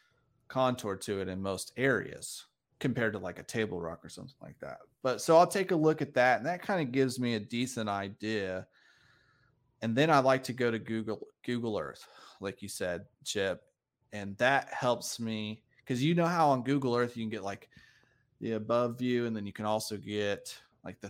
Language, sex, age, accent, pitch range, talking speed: English, male, 30-49, American, 100-130 Hz, 205 wpm